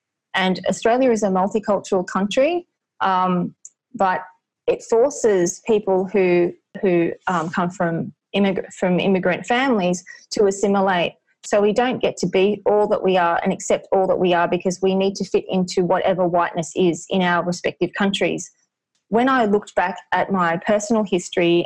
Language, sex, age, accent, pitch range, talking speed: English, female, 20-39, Australian, 180-210 Hz, 165 wpm